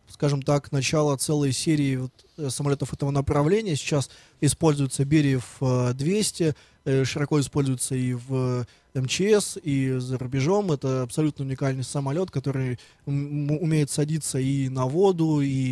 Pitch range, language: 130-155 Hz, Russian